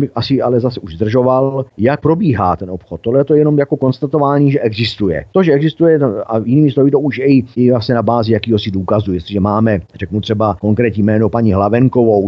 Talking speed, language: 195 wpm, Czech